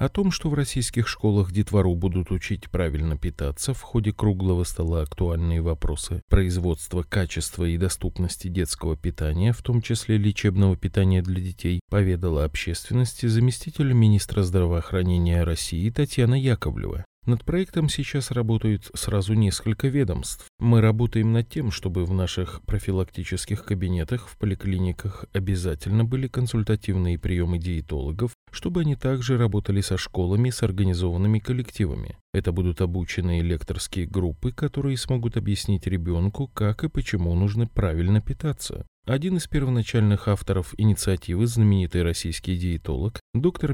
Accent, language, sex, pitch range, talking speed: native, Russian, male, 90-115 Hz, 130 wpm